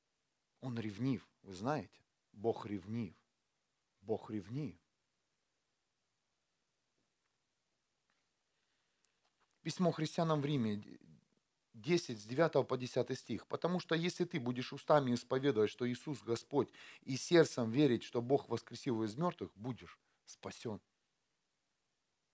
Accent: native